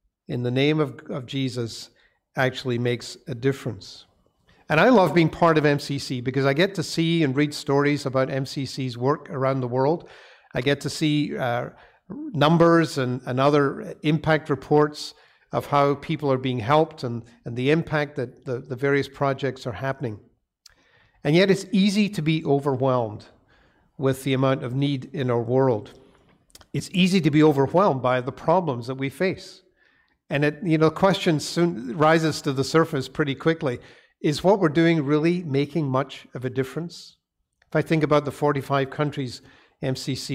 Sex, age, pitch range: male, 50-69, 130-155 Hz